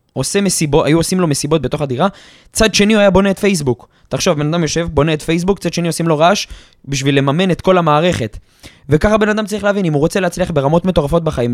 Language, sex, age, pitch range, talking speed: Hebrew, male, 20-39, 120-175 Hz, 230 wpm